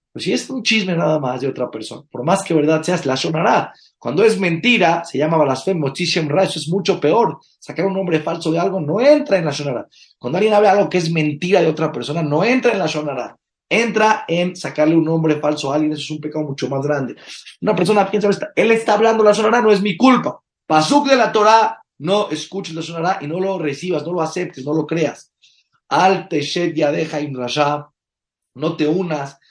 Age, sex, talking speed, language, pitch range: 30-49, male, 220 wpm, Spanish, 150-195 Hz